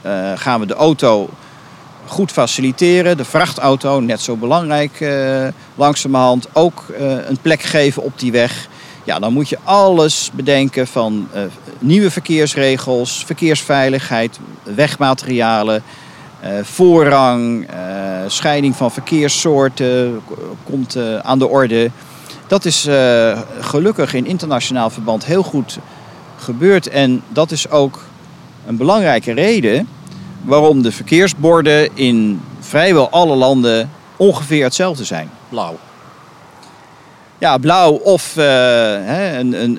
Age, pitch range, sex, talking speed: 50-69, 120-155 Hz, male, 120 wpm